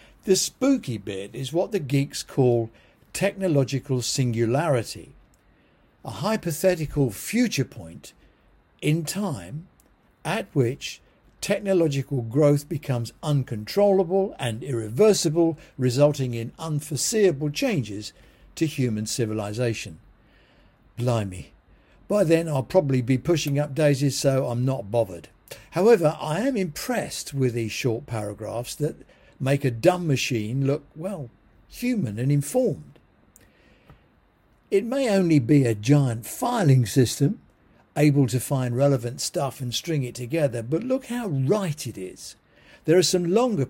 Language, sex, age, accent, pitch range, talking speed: English, male, 60-79, British, 120-165 Hz, 120 wpm